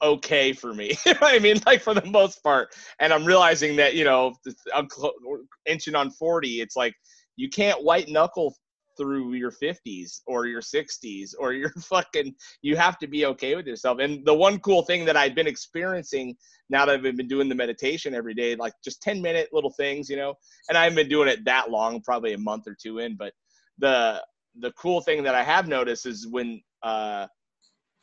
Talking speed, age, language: 210 wpm, 30-49, English